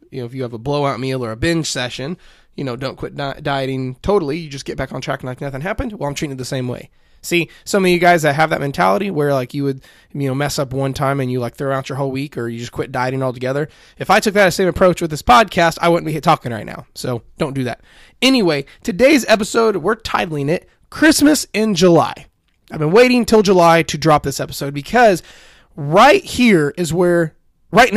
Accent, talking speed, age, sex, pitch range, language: American, 240 wpm, 20-39, male, 135-190 Hz, English